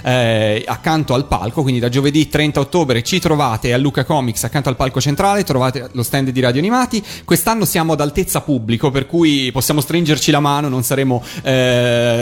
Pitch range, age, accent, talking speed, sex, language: 125-160 Hz, 30-49, native, 185 wpm, male, Italian